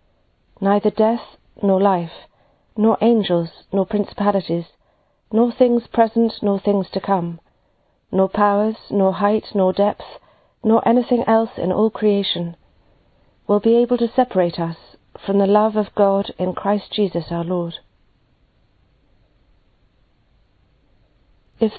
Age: 40-59